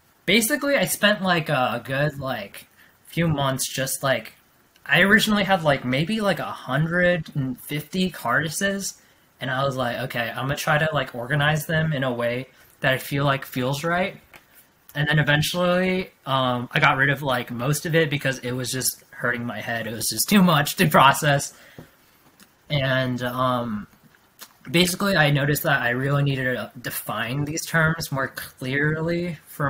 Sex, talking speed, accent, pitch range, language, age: male, 165 wpm, American, 130-165 Hz, English, 20-39